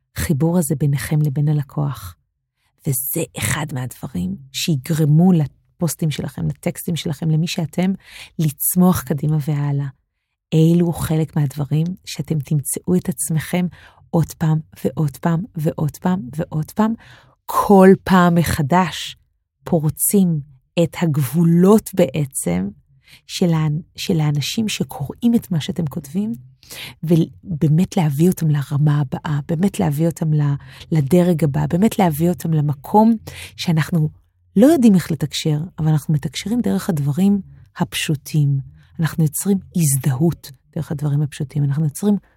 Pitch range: 145-180 Hz